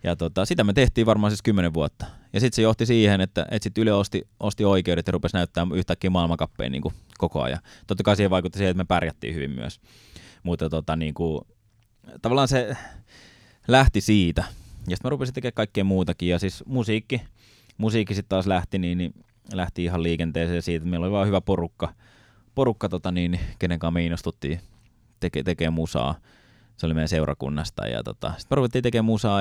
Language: Finnish